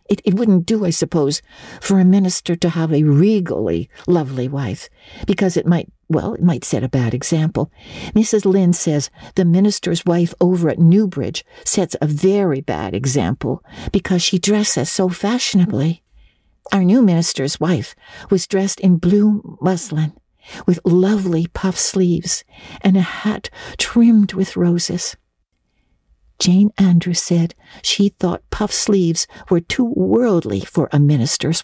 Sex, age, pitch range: female, 60-79, 155-195 Hz